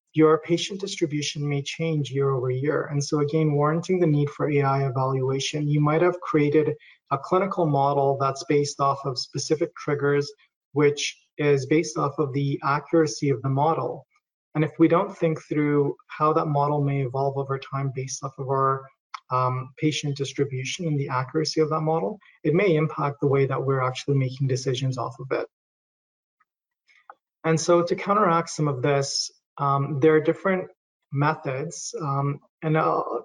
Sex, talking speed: male, 170 wpm